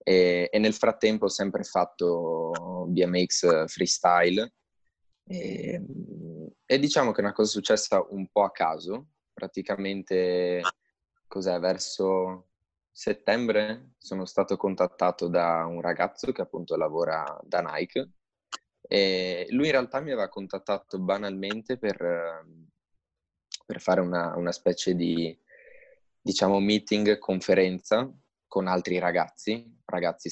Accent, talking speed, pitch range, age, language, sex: native, 115 wpm, 90-110 Hz, 20-39, Italian, male